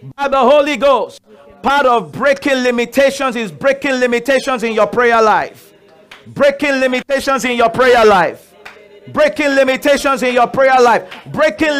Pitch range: 255-295 Hz